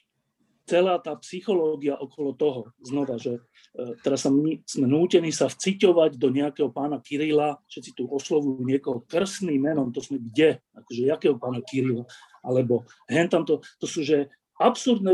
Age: 40-59